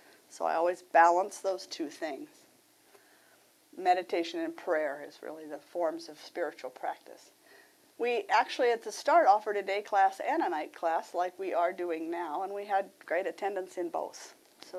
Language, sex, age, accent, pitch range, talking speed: English, female, 50-69, American, 185-270 Hz, 175 wpm